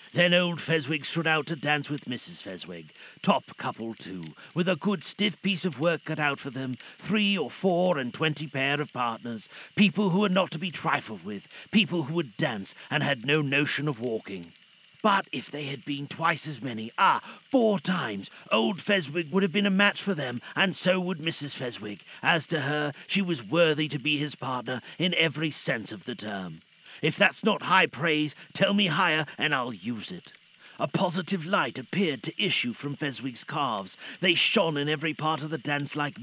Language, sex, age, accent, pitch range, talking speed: English, male, 40-59, British, 145-185 Hz, 200 wpm